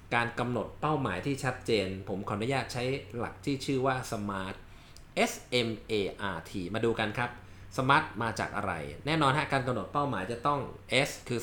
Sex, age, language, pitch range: male, 20-39, Thai, 105-135 Hz